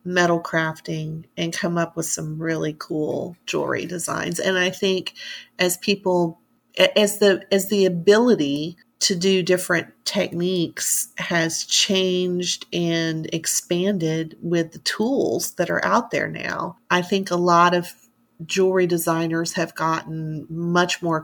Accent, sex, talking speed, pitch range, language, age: American, female, 135 wpm, 155-175 Hz, English, 40-59